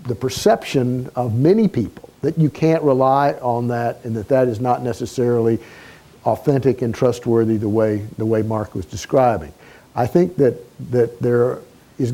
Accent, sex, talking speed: American, male, 165 wpm